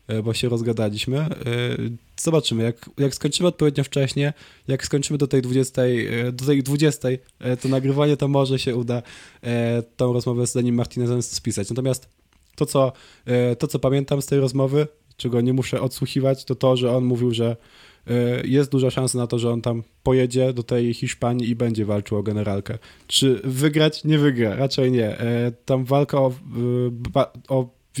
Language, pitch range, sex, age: Polish, 120-135 Hz, male, 20-39